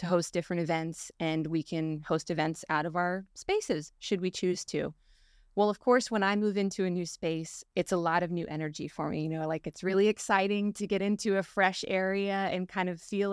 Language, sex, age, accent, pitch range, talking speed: English, female, 20-39, American, 170-195 Hz, 230 wpm